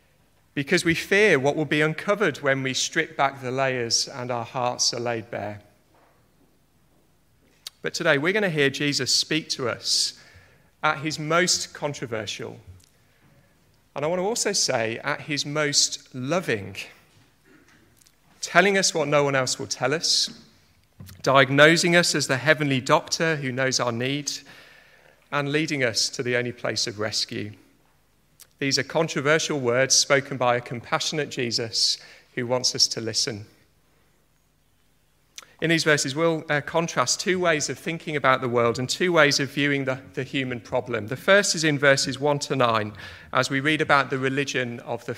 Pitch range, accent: 120-150 Hz, British